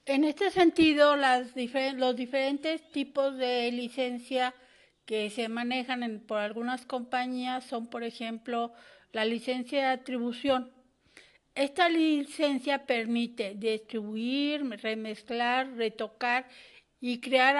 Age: 50-69